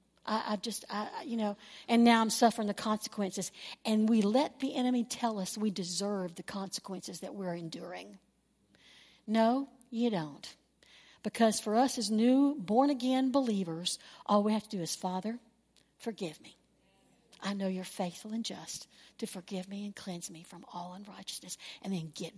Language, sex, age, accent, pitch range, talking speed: English, female, 60-79, American, 190-250 Hz, 165 wpm